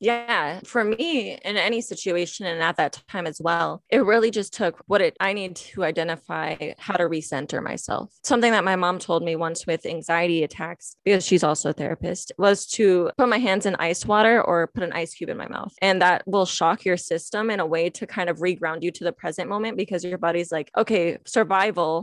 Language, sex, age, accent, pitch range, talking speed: English, female, 20-39, American, 170-205 Hz, 220 wpm